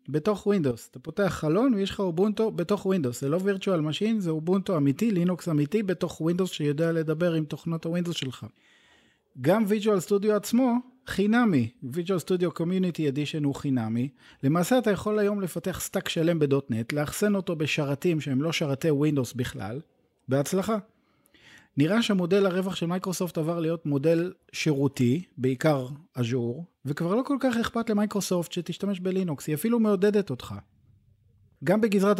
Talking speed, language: 150 wpm, Hebrew